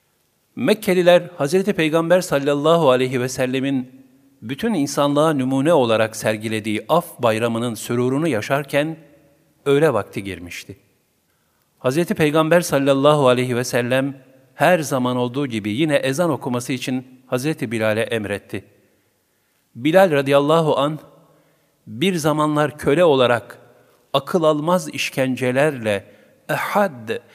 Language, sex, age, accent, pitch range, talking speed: Turkish, male, 50-69, native, 115-145 Hz, 105 wpm